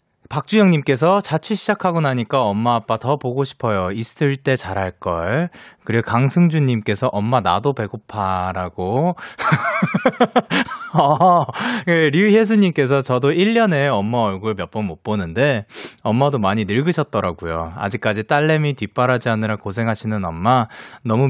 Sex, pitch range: male, 105-155 Hz